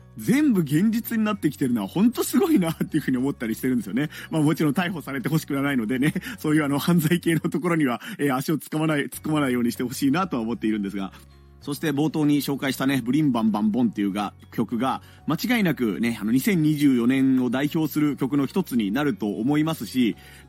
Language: Japanese